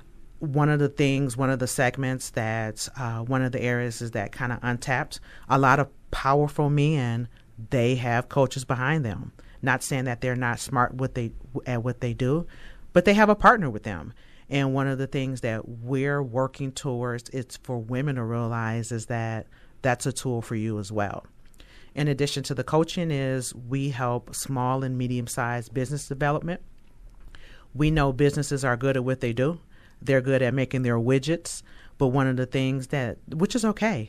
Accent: American